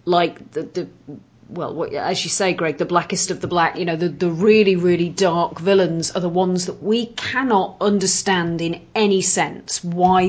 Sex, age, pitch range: female, 30-49, 170-205 Hz